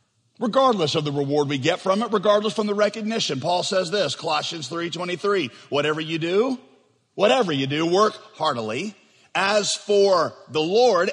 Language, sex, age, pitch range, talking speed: English, male, 40-59, 140-205 Hz, 160 wpm